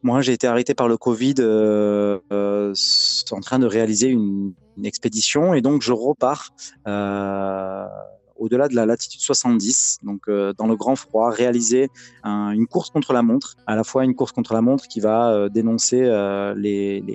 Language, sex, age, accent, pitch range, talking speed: French, male, 20-39, French, 105-125 Hz, 185 wpm